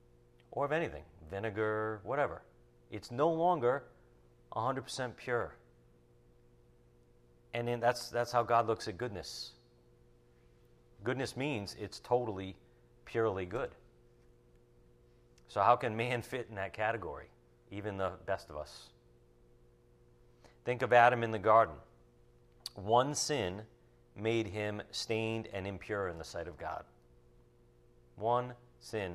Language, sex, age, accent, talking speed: English, male, 40-59, American, 120 wpm